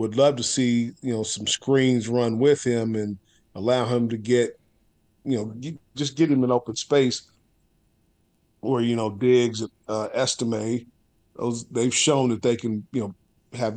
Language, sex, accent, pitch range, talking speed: English, male, American, 110-130 Hz, 175 wpm